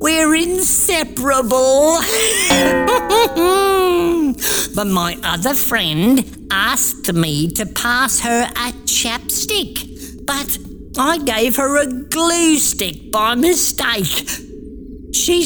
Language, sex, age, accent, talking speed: English, female, 50-69, British, 90 wpm